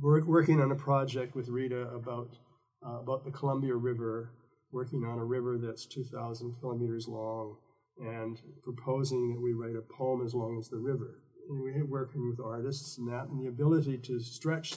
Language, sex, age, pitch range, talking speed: English, male, 50-69, 120-135 Hz, 185 wpm